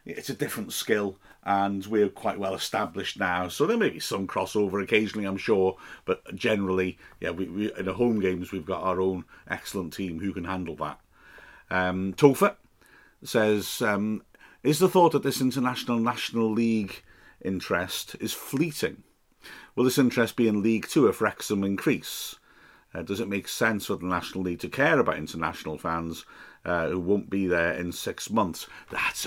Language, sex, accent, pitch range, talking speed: English, male, British, 90-110 Hz, 175 wpm